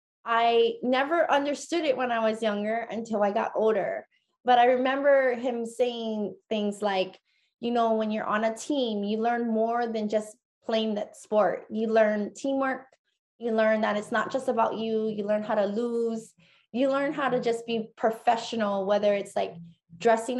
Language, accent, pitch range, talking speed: English, American, 210-250 Hz, 180 wpm